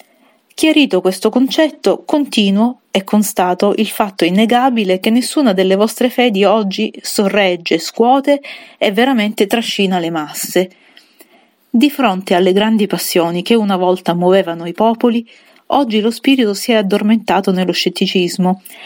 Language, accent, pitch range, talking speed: Italian, native, 185-235 Hz, 130 wpm